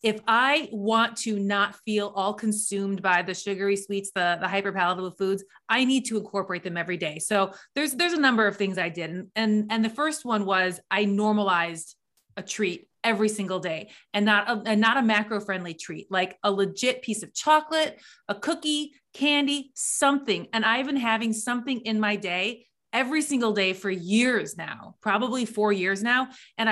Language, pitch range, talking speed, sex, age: English, 195-240 Hz, 185 wpm, female, 30-49